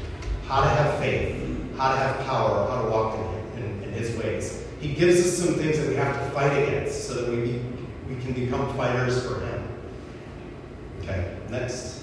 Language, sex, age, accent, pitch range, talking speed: Ukrainian, male, 30-49, American, 100-130 Hz, 195 wpm